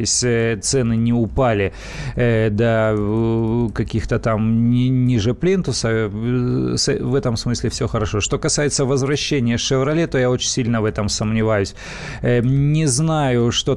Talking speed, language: 120 wpm, Russian